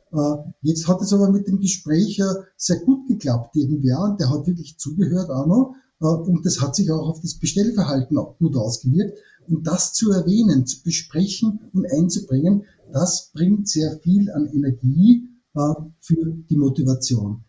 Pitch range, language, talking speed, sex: 145-190 Hz, German, 160 wpm, male